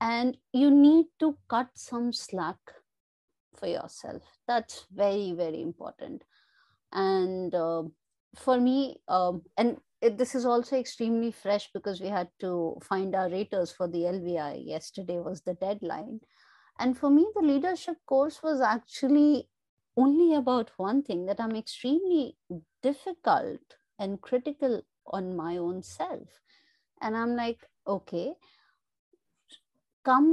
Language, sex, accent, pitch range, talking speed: English, female, Indian, 200-275 Hz, 135 wpm